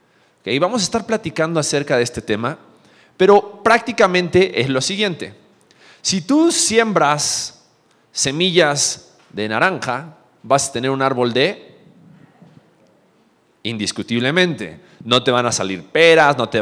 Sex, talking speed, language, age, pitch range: male, 125 wpm, Spanish, 40-59, 115-180 Hz